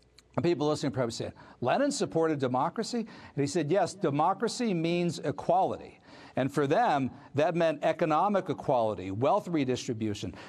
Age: 50-69